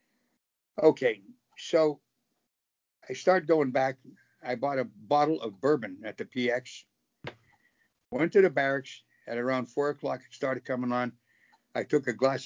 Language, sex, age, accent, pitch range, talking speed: English, male, 60-79, American, 120-155 Hz, 150 wpm